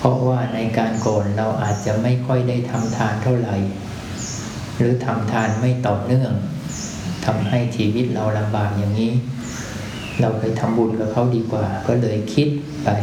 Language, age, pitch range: Thai, 20-39, 110-125 Hz